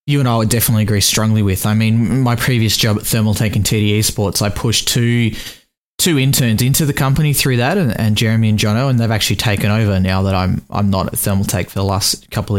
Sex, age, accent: male, 20-39, Australian